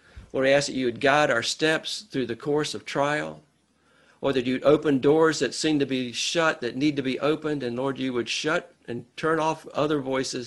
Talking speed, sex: 225 wpm, male